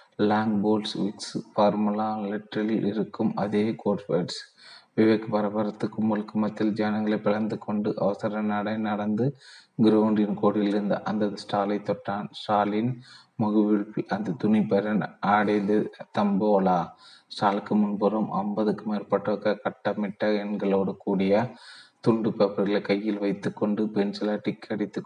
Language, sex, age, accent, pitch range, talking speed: Tamil, male, 30-49, native, 100-105 Hz, 95 wpm